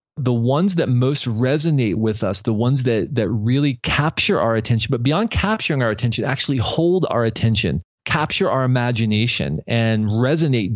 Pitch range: 115-150 Hz